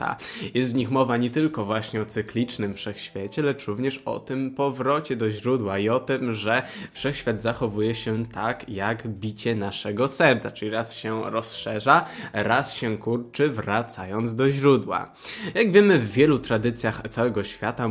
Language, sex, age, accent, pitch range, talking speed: Polish, male, 20-39, native, 110-135 Hz, 155 wpm